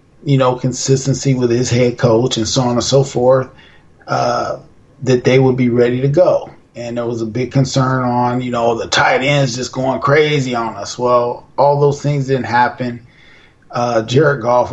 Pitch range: 120-145 Hz